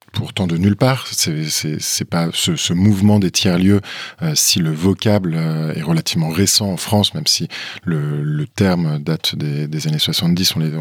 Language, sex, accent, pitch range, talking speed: French, male, French, 85-115 Hz, 190 wpm